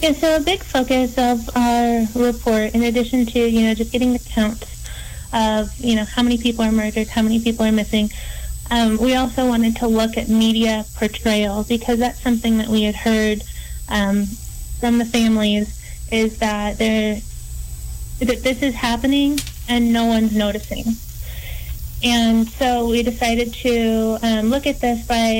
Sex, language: female, English